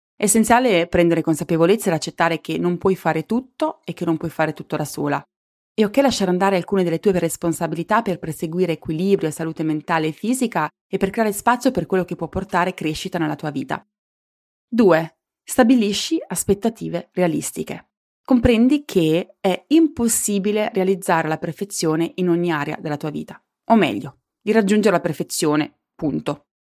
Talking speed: 160 wpm